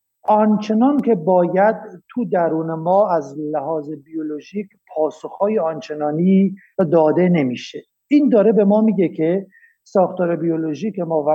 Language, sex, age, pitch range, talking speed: Persian, male, 50-69, 155-210 Hz, 120 wpm